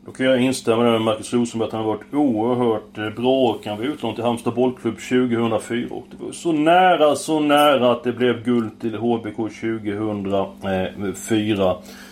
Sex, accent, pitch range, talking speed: male, native, 115-190 Hz, 170 wpm